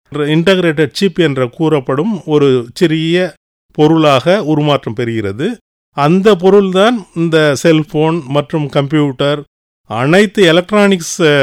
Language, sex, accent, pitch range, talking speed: English, male, Indian, 140-180 Hz, 90 wpm